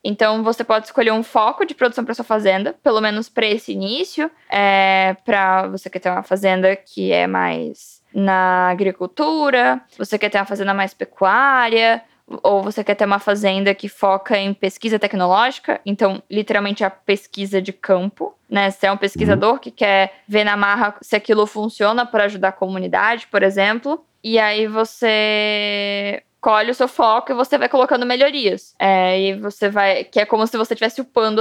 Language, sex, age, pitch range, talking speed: Portuguese, female, 10-29, 195-230 Hz, 180 wpm